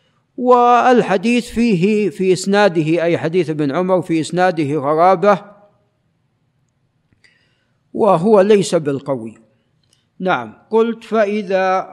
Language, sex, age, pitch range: Arabic, male, 50-69, 155-205 Hz